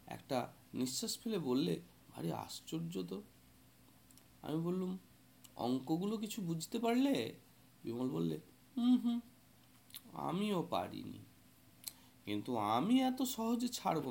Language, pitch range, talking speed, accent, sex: Bengali, 115-185 Hz, 70 wpm, native, male